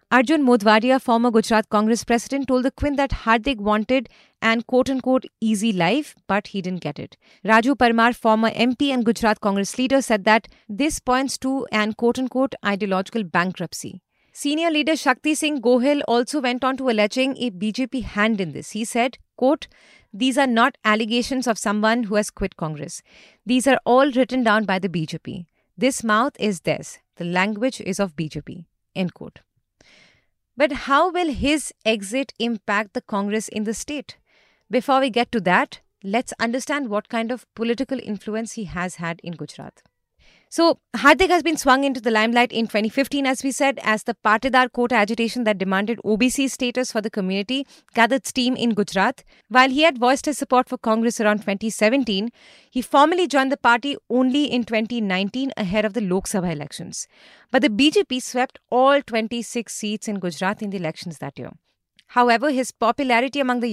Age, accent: 30-49, Indian